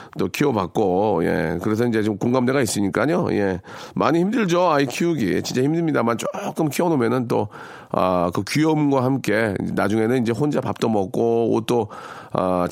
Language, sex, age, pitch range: Korean, male, 40-59, 105-145 Hz